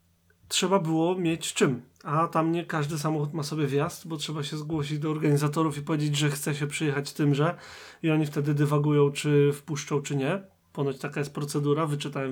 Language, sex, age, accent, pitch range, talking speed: Polish, male, 30-49, native, 145-170 Hz, 185 wpm